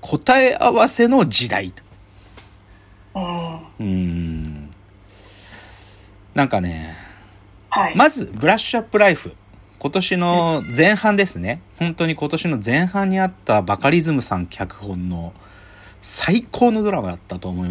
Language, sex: Japanese, male